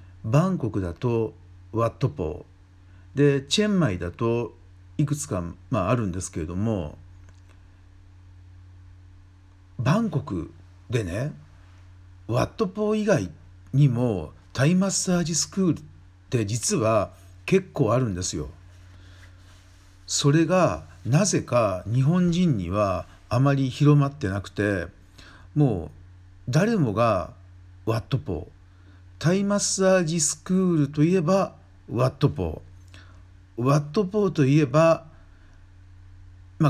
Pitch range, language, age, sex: 90-150 Hz, Japanese, 50-69, male